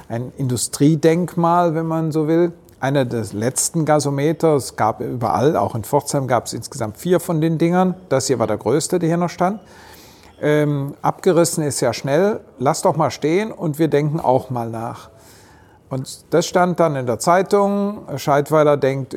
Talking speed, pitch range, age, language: 175 wpm, 125-165 Hz, 50-69, German